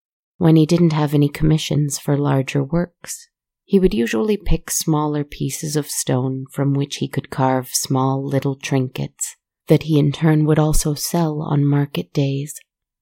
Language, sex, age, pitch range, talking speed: English, female, 30-49, 135-155 Hz, 160 wpm